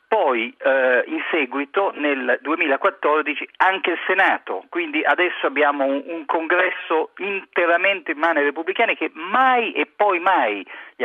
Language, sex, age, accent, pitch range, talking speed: Italian, male, 40-59, native, 140-215 Hz, 135 wpm